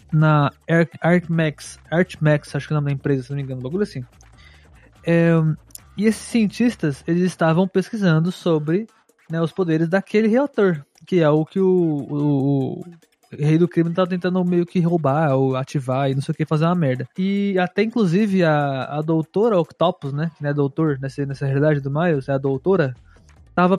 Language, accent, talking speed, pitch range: Portuguese, Brazilian, 190 wpm, 140-185 Hz